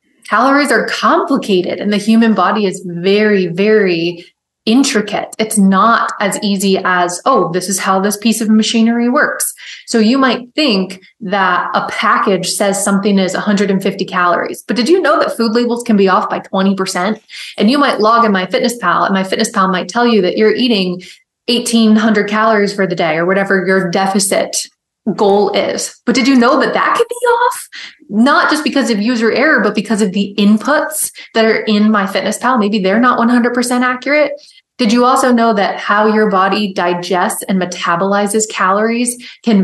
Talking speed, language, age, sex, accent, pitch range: 185 wpm, English, 20-39, female, American, 195-235 Hz